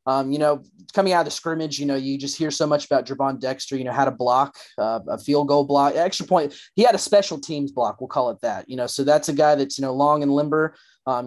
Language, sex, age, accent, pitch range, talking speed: English, male, 30-49, American, 140-155 Hz, 270 wpm